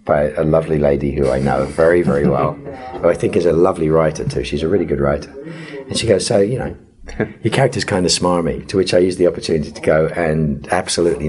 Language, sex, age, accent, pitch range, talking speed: English, male, 40-59, British, 75-90 Hz, 235 wpm